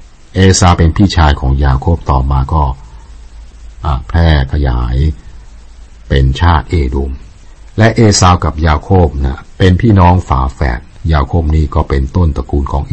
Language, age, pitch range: Thai, 60-79, 70-90 Hz